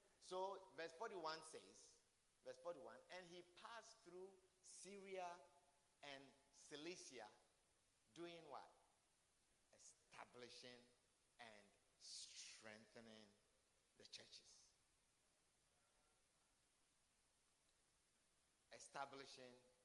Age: 50-69